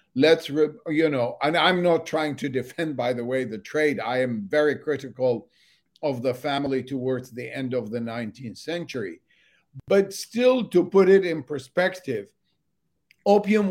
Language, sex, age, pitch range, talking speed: English, male, 50-69, 135-170 Hz, 160 wpm